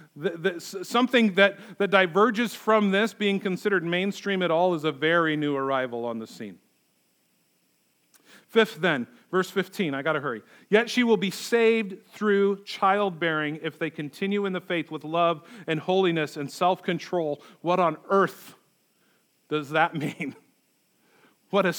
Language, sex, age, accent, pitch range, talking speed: English, male, 40-59, American, 150-195 Hz, 150 wpm